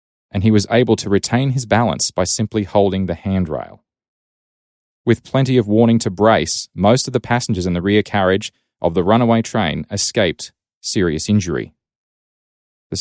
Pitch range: 90-110 Hz